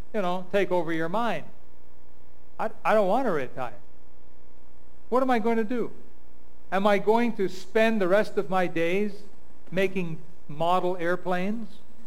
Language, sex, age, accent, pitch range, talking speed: English, male, 50-69, American, 150-200 Hz, 155 wpm